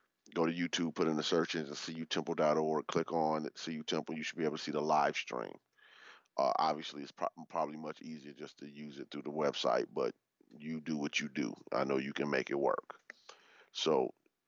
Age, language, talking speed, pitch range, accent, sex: 30-49, English, 205 wpm, 75-80 Hz, American, male